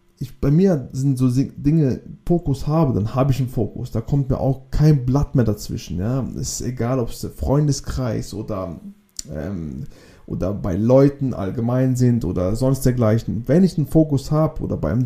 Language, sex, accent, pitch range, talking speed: German, male, German, 115-140 Hz, 170 wpm